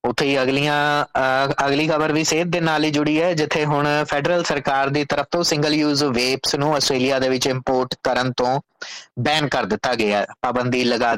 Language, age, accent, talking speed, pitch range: English, 20-39, Indian, 190 wpm, 125-150 Hz